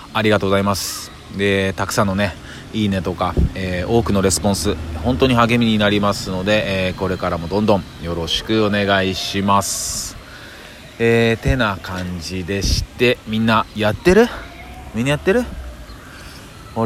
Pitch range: 85-110 Hz